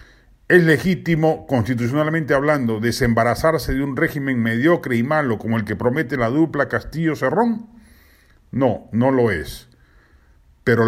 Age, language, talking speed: 50-69, Spanish, 130 wpm